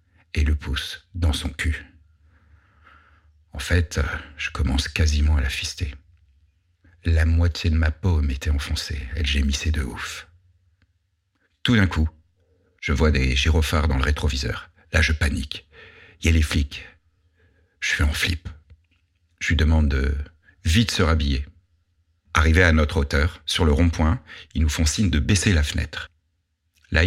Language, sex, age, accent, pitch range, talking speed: French, male, 60-79, French, 75-90 Hz, 155 wpm